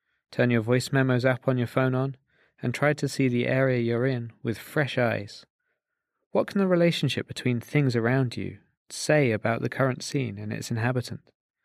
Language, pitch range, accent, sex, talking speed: English, 115-140 Hz, British, male, 185 wpm